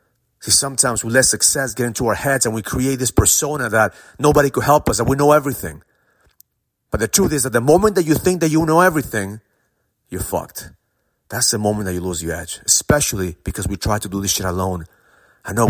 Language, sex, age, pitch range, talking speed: English, male, 40-59, 105-160 Hz, 220 wpm